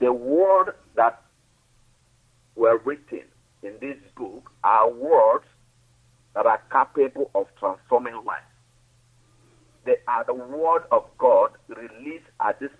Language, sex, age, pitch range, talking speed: English, male, 50-69, 120-175 Hz, 115 wpm